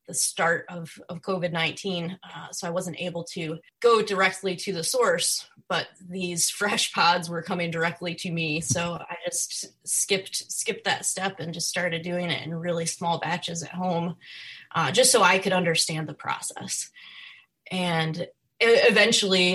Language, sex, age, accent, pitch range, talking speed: English, female, 20-39, American, 165-185 Hz, 165 wpm